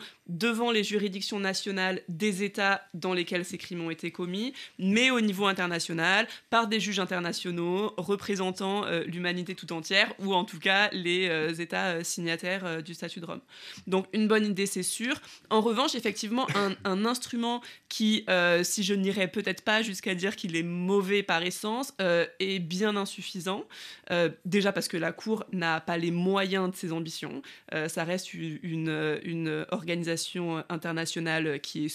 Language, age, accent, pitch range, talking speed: French, 20-39, French, 170-210 Hz, 175 wpm